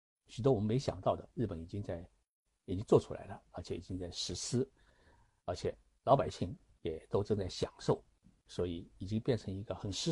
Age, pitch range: 60-79, 90-135 Hz